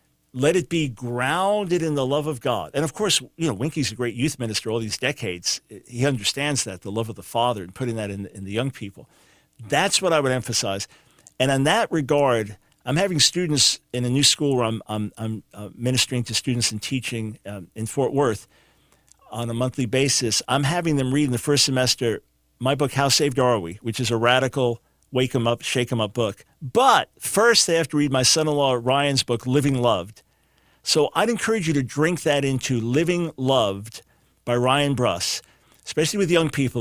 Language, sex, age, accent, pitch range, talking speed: English, male, 50-69, American, 120-145 Hz, 205 wpm